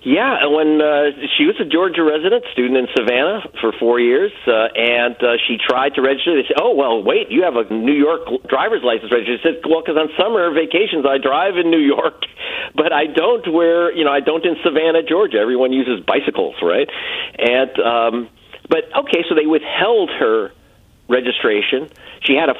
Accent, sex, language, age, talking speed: American, male, English, 50-69, 195 wpm